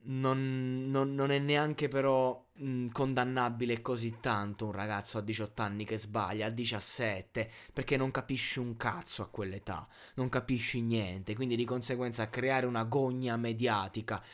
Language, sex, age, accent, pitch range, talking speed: Italian, male, 20-39, native, 105-125 Hz, 140 wpm